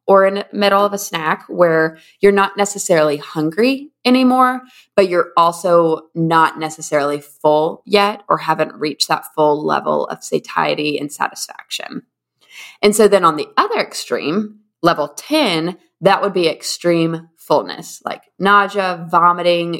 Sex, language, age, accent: female, English, 20-39, American